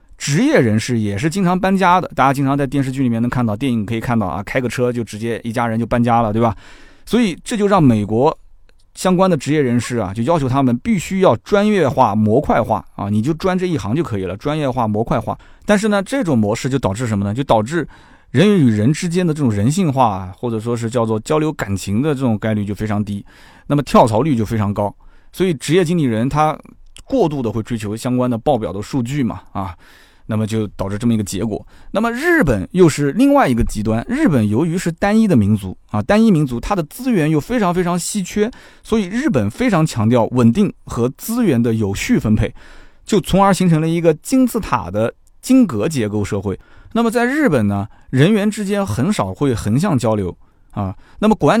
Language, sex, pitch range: Chinese, male, 110-180 Hz